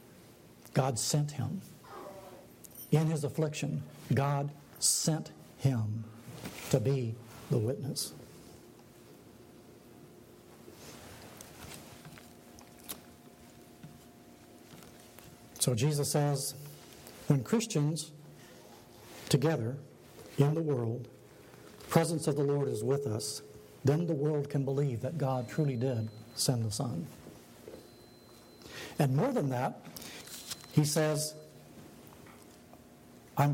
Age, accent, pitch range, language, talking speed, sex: 60-79, American, 125-155 Hz, English, 90 wpm, male